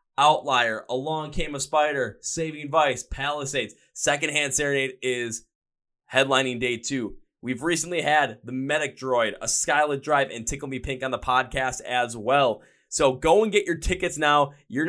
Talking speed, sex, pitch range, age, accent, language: 160 wpm, male, 130-165 Hz, 20-39, American, English